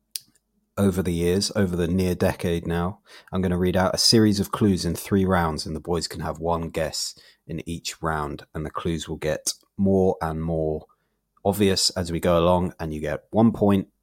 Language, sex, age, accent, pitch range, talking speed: English, male, 30-49, British, 80-100 Hz, 205 wpm